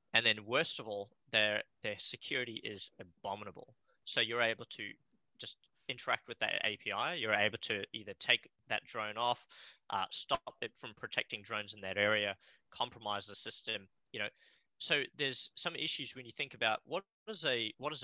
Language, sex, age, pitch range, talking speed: English, male, 20-39, 100-120 Hz, 180 wpm